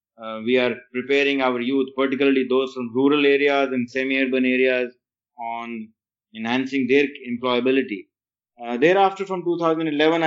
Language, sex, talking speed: English, male, 130 wpm